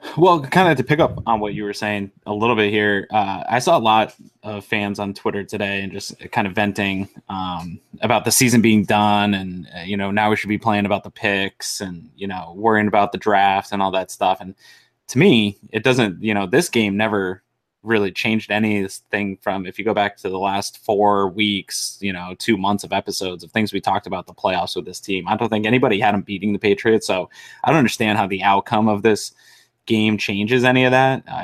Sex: male